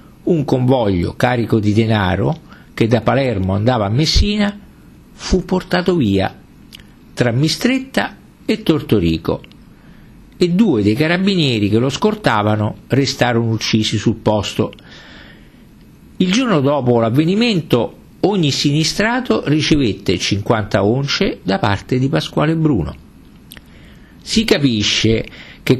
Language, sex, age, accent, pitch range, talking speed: Italian, male, 50-69, native, 105-160 Hz, 105 wpm